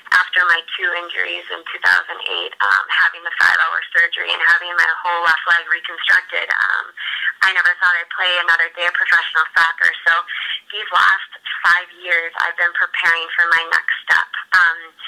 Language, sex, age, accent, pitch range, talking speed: English, female, 20-39, American, 170-180 Hz, 165 wpm